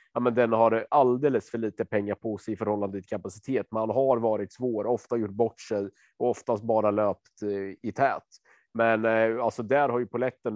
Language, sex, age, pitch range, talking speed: Swedish, male, 30-49, 105-120 Hz, 200 wpm